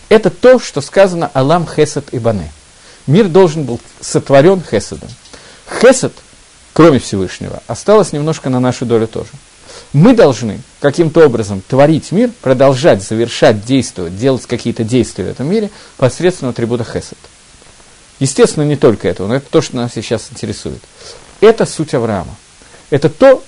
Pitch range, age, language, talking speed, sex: 120-160 Hz, 50-69, Russian, 140 wpm, male